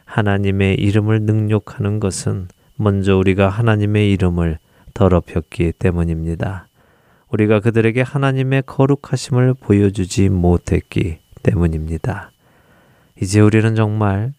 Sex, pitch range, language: male, 90-120 Hz, Korean